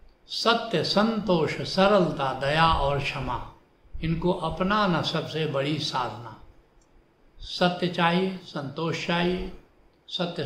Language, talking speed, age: Hindi, 90 wpm, 70-89